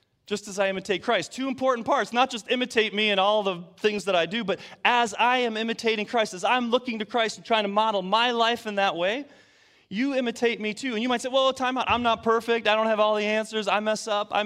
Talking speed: 260 wpm